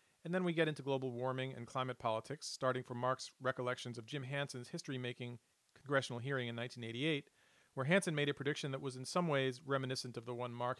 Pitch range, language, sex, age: 120-140 Hz, English, male, 40-59